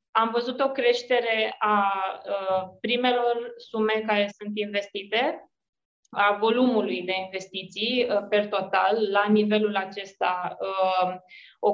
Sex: female